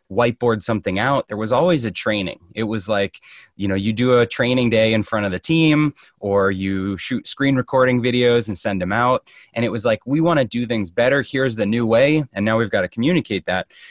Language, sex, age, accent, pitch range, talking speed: English, male, 20-39, American, 100-125 Hz, 235 wpm